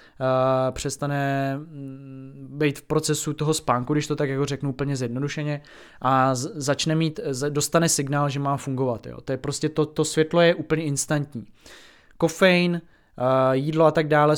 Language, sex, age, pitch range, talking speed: Czech, male, 20-39, 130-150 Hz, 150 wpm